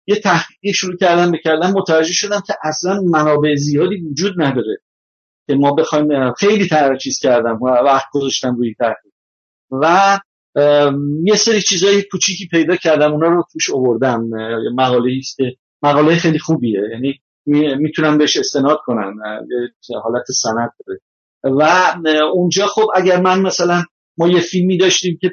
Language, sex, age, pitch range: Persian, male, 50-69, 140-175 Hz